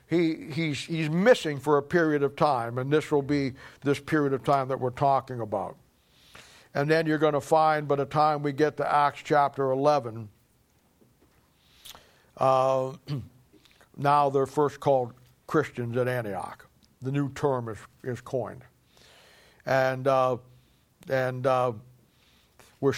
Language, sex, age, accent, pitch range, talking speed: English, male, 60-79, American, 125-145 Hz, 145 wpm